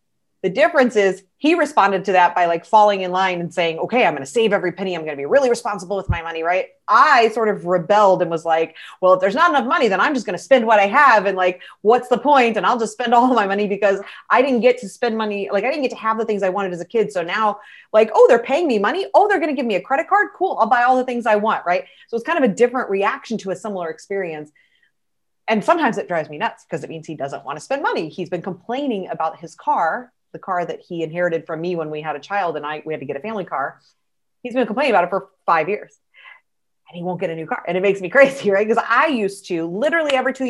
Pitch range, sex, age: 175-245 Hz, female, 30-49